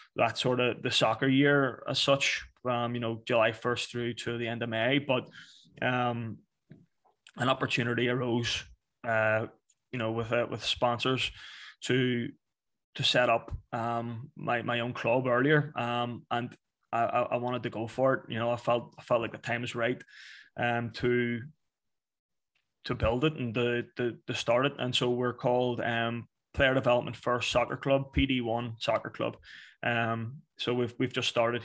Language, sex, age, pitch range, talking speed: English, male, 20-39, 115-125 Hz, 175 wpm